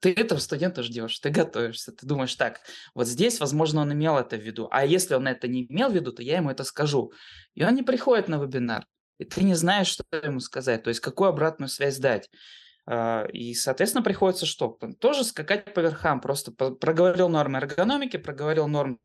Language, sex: Russian, male